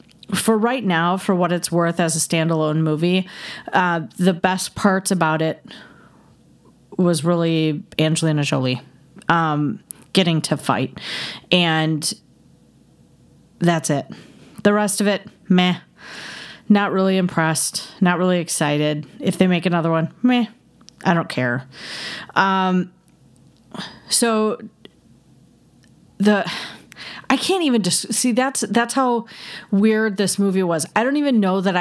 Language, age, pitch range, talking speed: English, 30-49, 165-210 Hz, 125 wpm